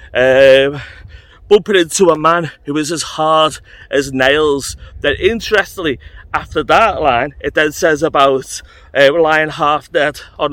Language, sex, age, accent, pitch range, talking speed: English, male, 30-49, British, 130-180 Hz, 140 wpm